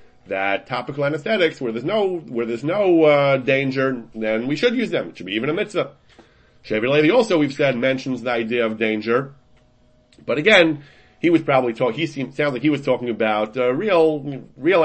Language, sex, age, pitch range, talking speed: English, male, 30-49, 115-145 Hz, 200 wpm